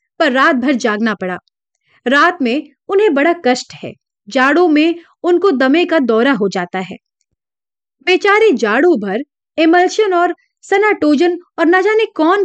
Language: Hindi